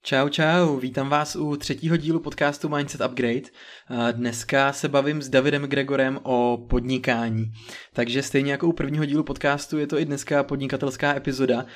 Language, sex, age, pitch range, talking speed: Czech, male, 20-39, 125-145 Hz, 160 wpm